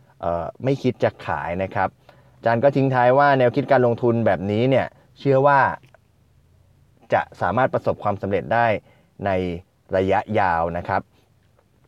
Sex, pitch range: male, 100-130 Hz